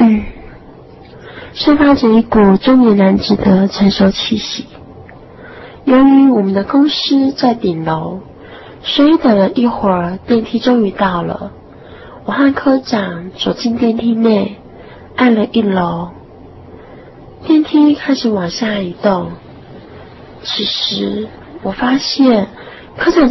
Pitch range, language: 200-260 Hz, Chinese